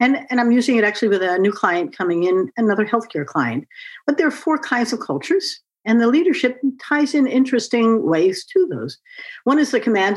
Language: English